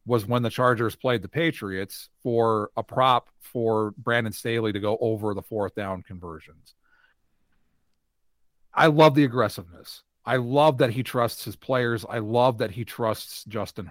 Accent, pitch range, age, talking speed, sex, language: American, 95-140 Hz, 40-59, 160 wpm, male, English